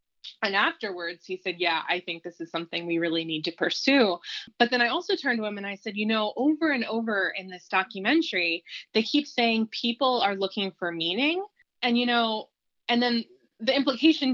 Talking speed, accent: 200 wpm, American